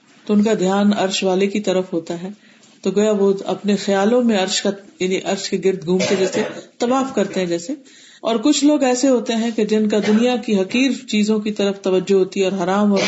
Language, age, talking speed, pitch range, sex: Urdu, 40-59, 220 wpm, 190-230 Hz, female